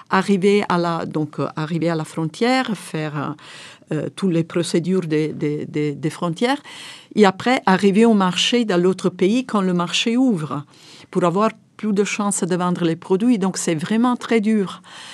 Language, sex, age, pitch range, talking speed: French, female, 50-69, 175-215 Hz, 180 wpm